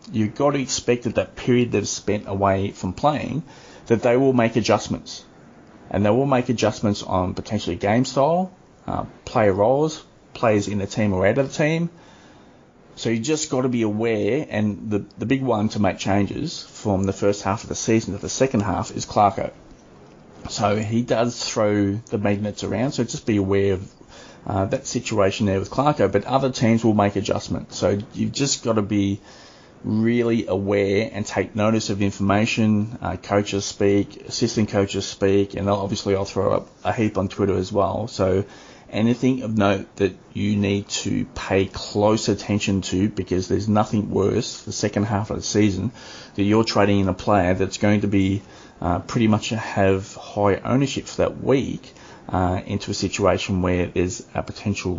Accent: Australian